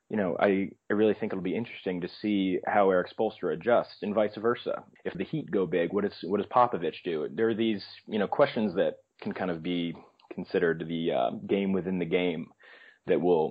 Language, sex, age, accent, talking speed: English, male, 30-49, American, 220 wpm